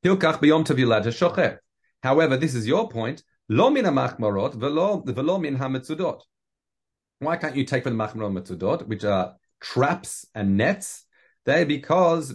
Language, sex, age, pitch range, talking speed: English, male, 40-59, 110-160 Hz, 90 wpm